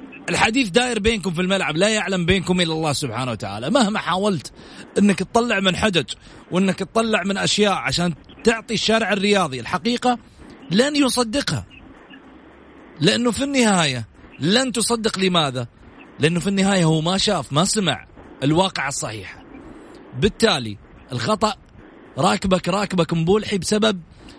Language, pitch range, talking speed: Arabic, 145-210 Hz, 125 wpm